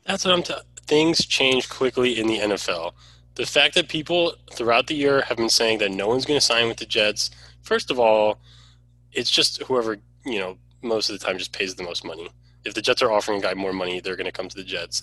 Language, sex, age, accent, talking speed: English, male, 20-39, American, 250 wpm